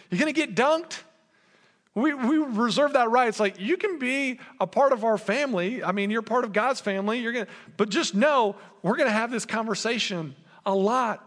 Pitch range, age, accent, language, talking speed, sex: 160-220 Hz, 40-59, American, English, 220 wpm, male